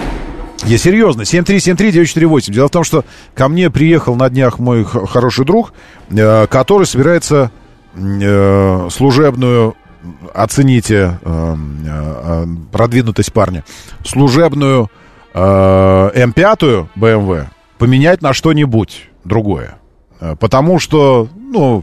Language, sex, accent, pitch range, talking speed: Russian, male, native, 95-150 Hz, 90 wpm